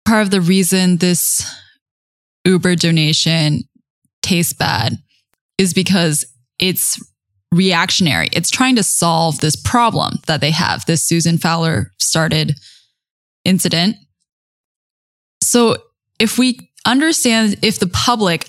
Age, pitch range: 10-29, 160-195 Hz